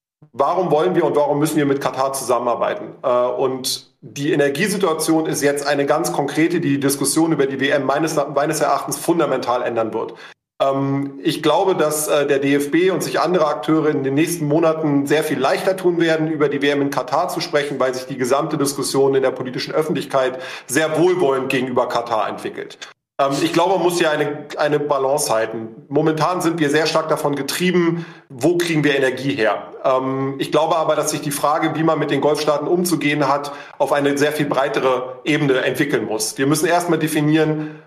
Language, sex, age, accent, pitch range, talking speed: German, male, 40-59, German, 135-160 Hz, 180 wpm